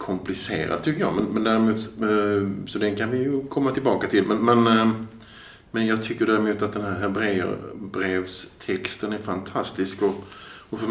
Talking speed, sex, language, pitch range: 155 wpm, male, Swedish, 95-110 Hz